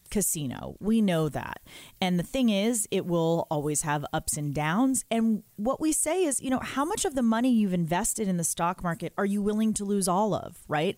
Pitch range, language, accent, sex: 175-230 Hz, English, American, female